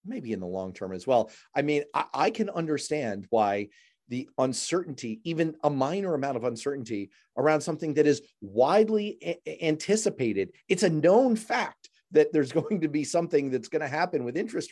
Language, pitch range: English, 125-205 Hz